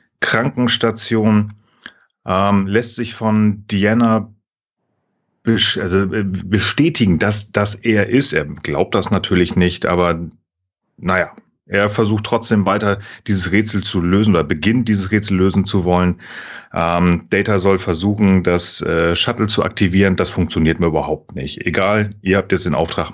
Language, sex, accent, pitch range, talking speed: German, male, German, 95-110 Hz, 135 wpm